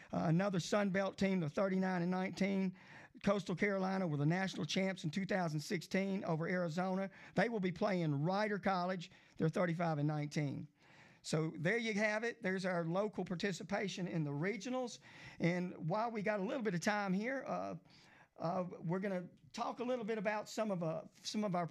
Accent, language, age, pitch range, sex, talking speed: American, English, 40-59, 165-195 Hz, male, 185 wpm